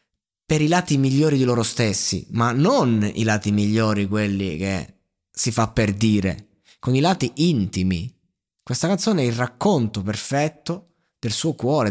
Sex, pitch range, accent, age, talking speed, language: male, 100-125 Hz, native, 20-39, 155 wpm, Italian